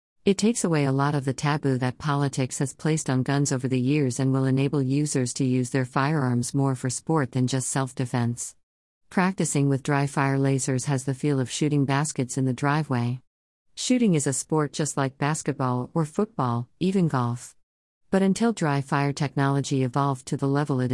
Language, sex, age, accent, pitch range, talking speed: English, female, 50-69, American, 130-155 Hz, 190 wpm